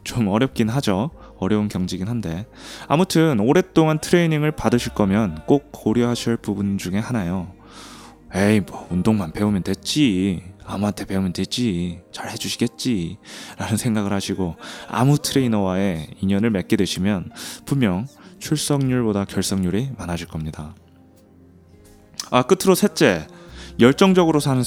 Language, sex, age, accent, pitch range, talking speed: English, male, 20-39, Korean, 90-135 Hz, 105 wpm